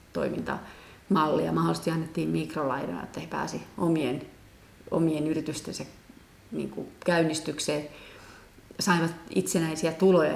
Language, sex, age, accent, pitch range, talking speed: Finnish, female, 30-49, native, 165-190 Hz, 85 wpm